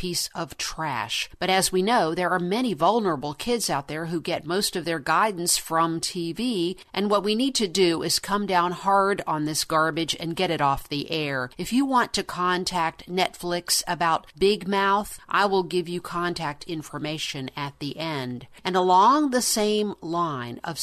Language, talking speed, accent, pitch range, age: English, 185 wpm, American, 160-200 Hz, 50-69